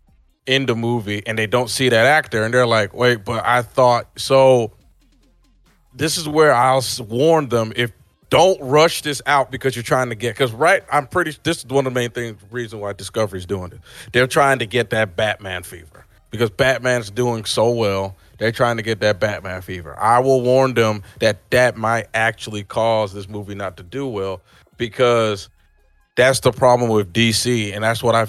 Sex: male